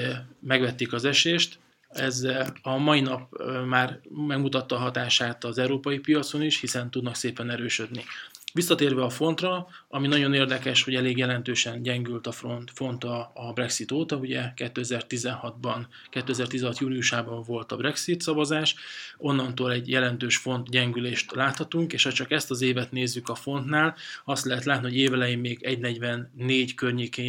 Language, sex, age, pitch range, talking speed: Hungarian, male, 20-39, 120-140 Hz, 145 wpm